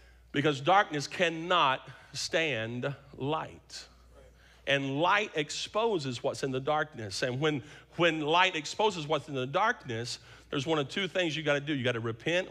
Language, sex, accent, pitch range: English, male, American, 125-190 Hz